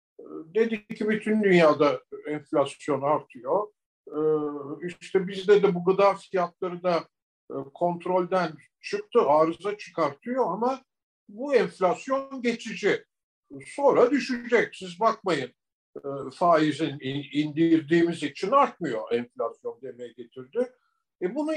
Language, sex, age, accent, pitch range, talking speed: Turkish, male, 50-69, native, 160-240 Hz, 95 wpm